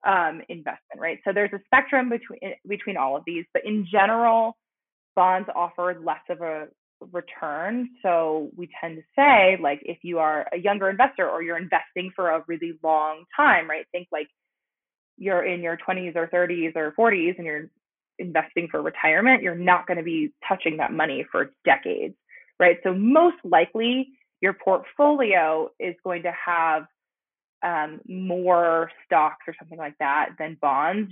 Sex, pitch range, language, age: female, 165-235 Hz, English, 20-39